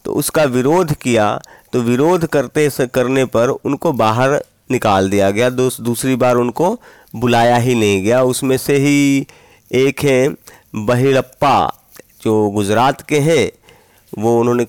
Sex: male